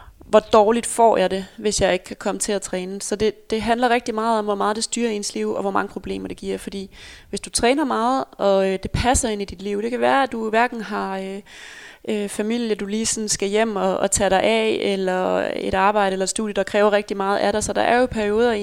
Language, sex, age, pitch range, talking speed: Danish, female, 20-39, 195-225 Hz, 255 wpm